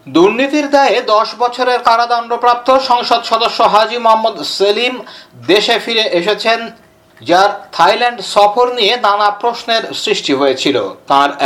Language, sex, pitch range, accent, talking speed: Bengali, male, 200-235 Hz, native, 60 wpm